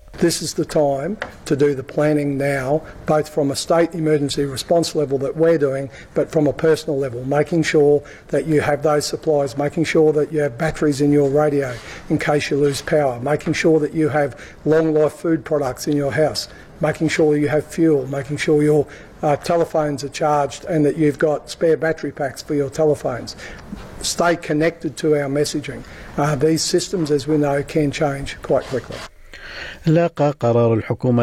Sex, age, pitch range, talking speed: male, 50-69, 115-150 Hz, 185 wpm